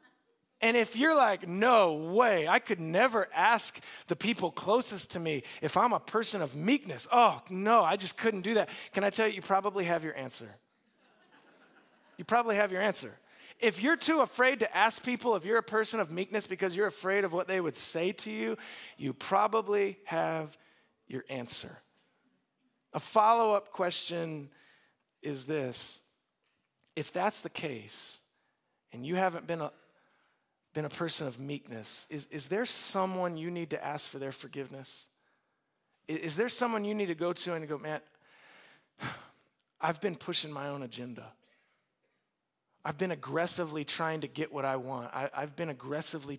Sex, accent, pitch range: male, American, 145-210 Hz